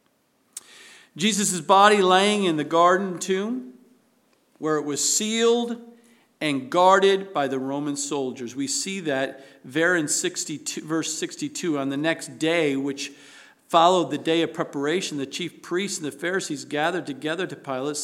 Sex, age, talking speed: male, 50-69, 145 wpm